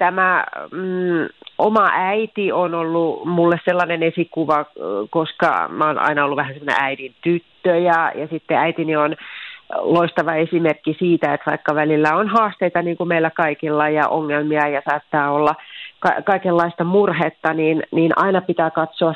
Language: Finnish